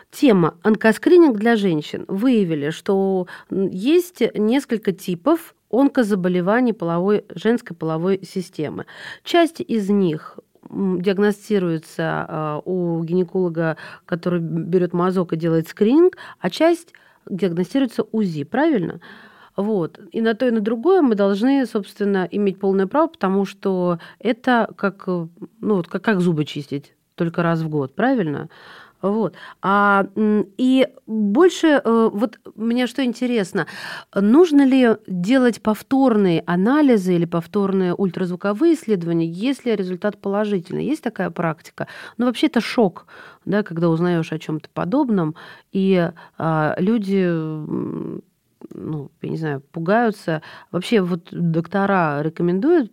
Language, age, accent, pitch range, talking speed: Russian, 40-59, native, 170-225 Hz, 115 wpm